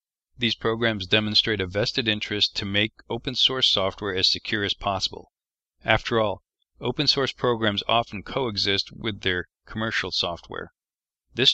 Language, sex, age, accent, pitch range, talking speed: English, male, 40-59, American, 95-115 Hz, 130 wpm